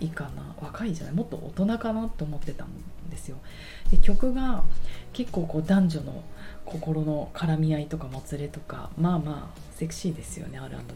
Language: Japanese